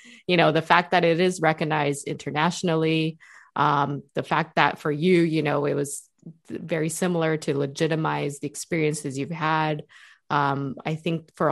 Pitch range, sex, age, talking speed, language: 150-175 Hz, female, 20-39, 160 wpm, English